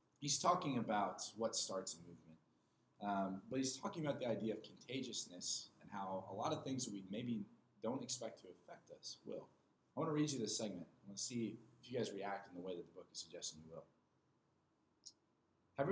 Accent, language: American, English